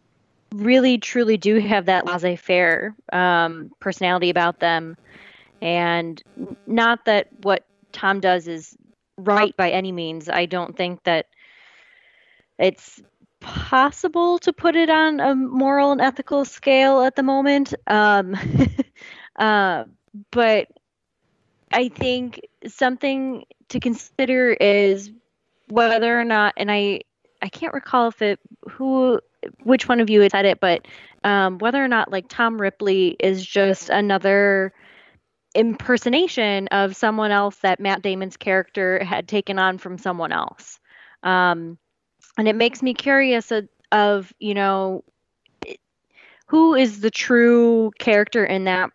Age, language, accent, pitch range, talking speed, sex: 20-39, English, American, 190-250 Hz, 135 wpm, female